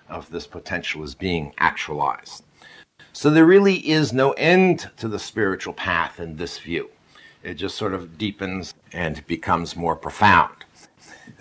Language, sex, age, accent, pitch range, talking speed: English, male, 60-79, American, 90-140 Hz, 155 wpm